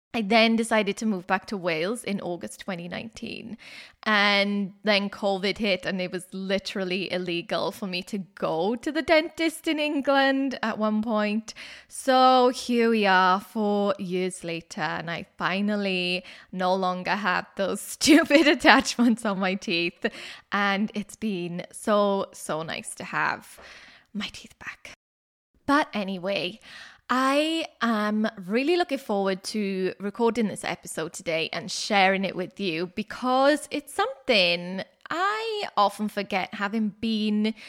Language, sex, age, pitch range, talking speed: English, female, 20-39, 190-255 Hz, 140 wpm